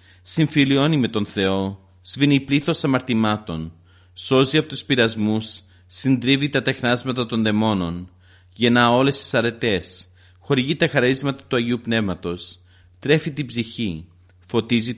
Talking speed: 120 wpm